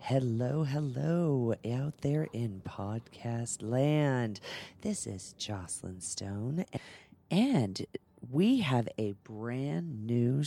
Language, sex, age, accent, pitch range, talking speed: English, female, 40-59, American, 115-155 Hz, 95 wpm